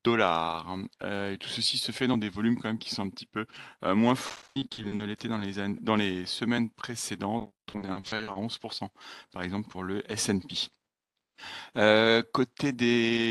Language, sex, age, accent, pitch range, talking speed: French, male, 40-59, French, 100-120 Hz, 185 wpm